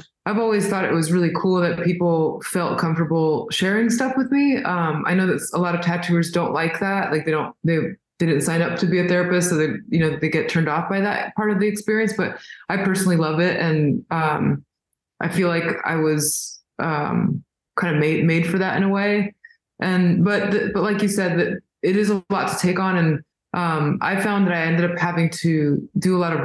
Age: 20-39